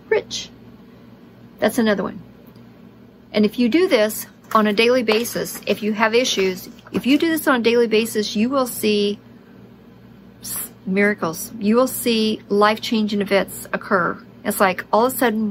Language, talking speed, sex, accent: English, 165 wpm, female, American